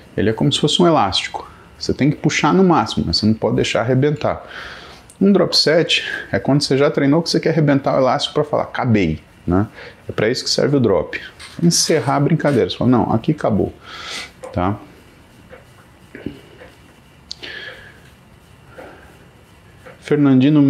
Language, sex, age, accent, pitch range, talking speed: Portuguese, male, 30-49, Brazilian, 90-130 Hz, 155 wpm